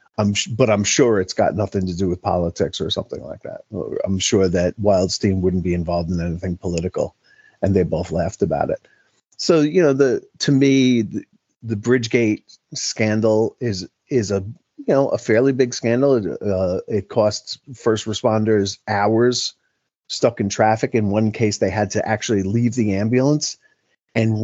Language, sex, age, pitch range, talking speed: English, male, 40-59, 100-120 Hz, 175 wpm